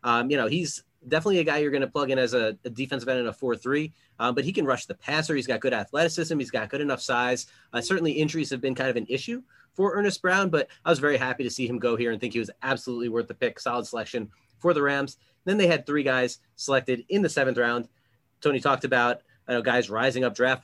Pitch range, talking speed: 120-145 Hz, 255 wpm